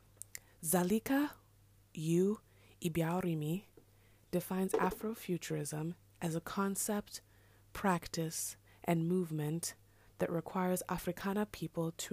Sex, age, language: female, 20-39, English